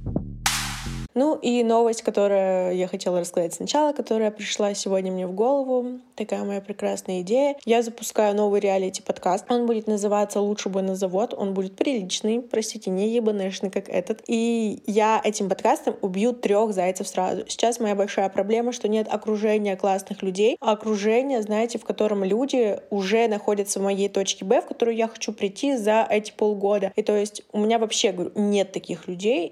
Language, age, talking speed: Russian, 20-39, 170 wpm